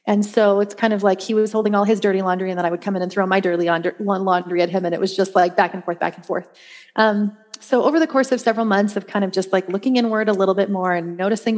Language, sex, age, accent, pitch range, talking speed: English, female, 30-49, American, 185-225 Hz, 300 wpm